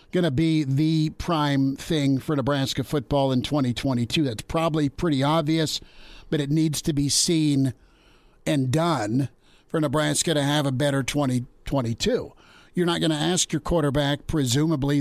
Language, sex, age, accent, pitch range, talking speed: English, male, 50-69, American, 140-160 Hz, 150 wpm